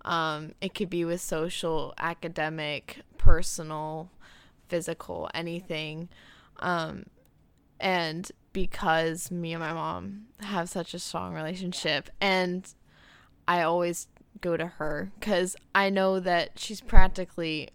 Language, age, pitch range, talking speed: English, 20-39, 165-190 Hz, 115 wpm